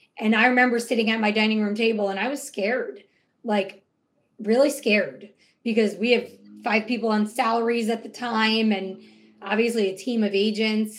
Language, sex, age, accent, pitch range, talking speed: English, female, 30-49, American, 215-255 Hz, 175 wpm